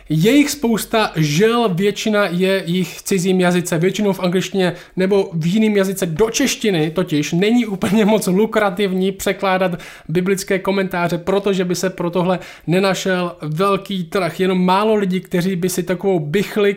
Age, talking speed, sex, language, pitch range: 20-39, 150 wpm, male, Czech, 175-205 Hz